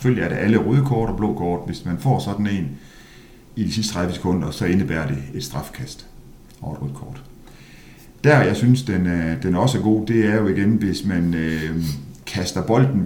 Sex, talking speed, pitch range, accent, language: male, 200 wpm, 85-110 Hz, native, Danish